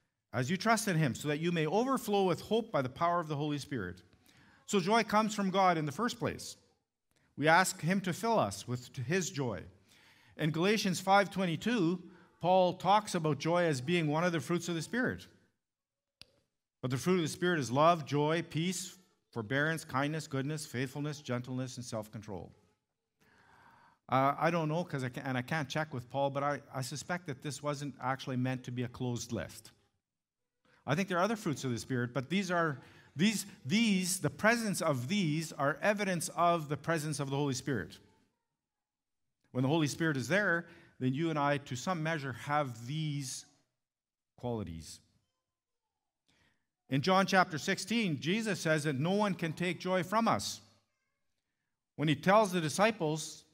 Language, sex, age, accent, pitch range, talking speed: English, male, 50-69, American, 135-180 Hz, 175 wpm